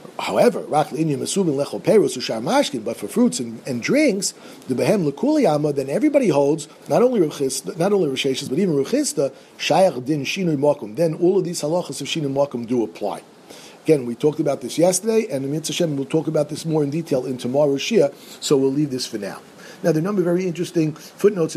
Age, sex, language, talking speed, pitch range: 50-69, male, English, 200 wpm, 135-180 Hz